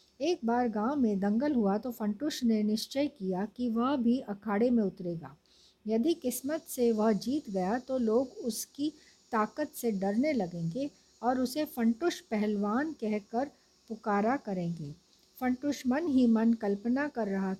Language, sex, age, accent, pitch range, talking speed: Hindi, female, 50-69, native, 205-255 Hz, 150 wpm